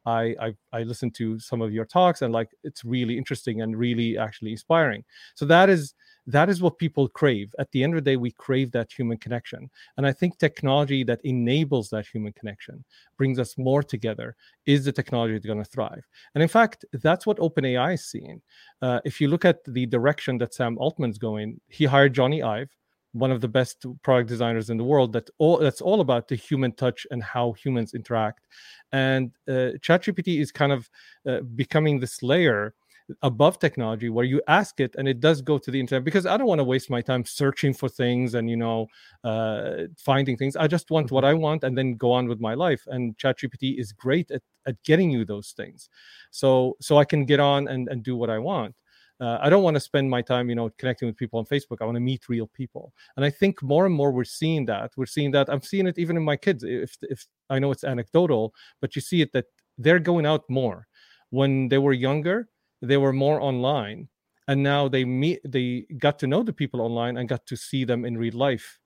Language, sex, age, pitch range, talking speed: English, male, 30-49, 120-145 Hz, 225 wpm